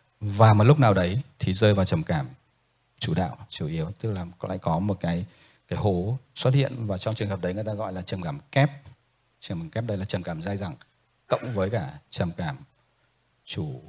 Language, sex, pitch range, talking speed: Vietnamese, male, 100-125 Hz, 225 wpm